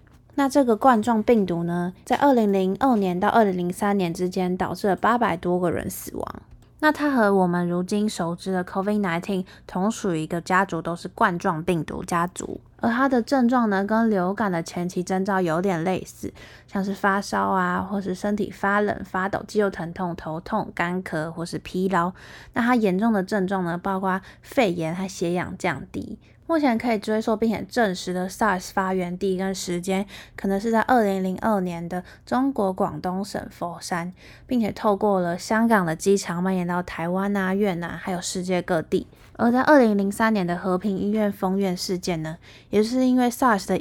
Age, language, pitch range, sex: 20-39, Chinese, 180-215 Hz, female